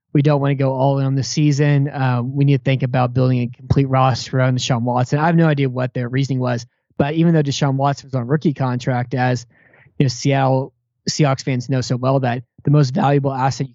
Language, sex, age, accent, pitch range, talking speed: English, male, 20-39, American, 130-145 Hz, 230 wpm